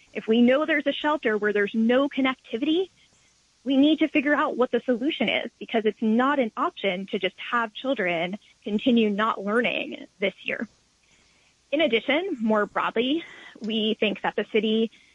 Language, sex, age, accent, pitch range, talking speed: English, female, 10-29, American, 215-285 Hz, 165 wpm